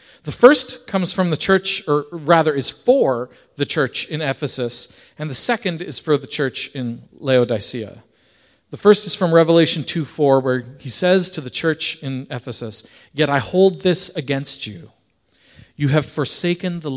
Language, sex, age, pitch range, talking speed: English, male, 40-59, 125-180 Hz, 165 wpm